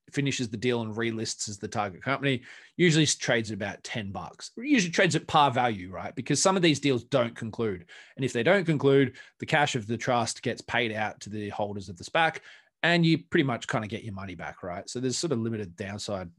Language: English